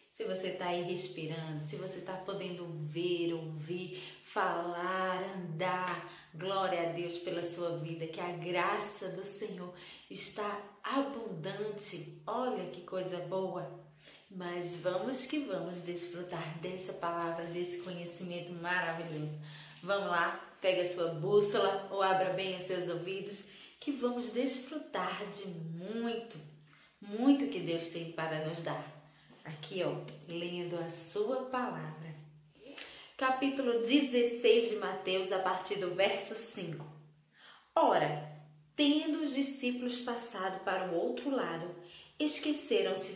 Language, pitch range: Portuguese, 170-230 Hz